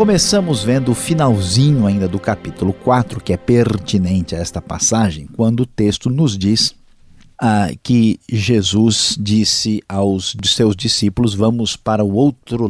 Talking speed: 140 wpm